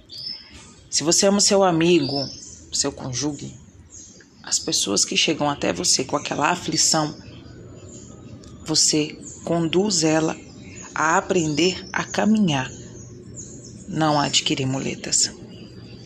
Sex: female